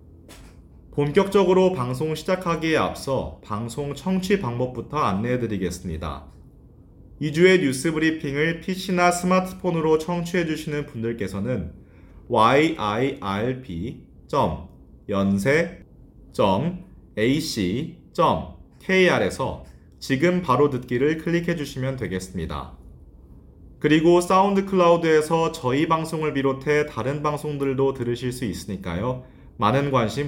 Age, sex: 30-49, male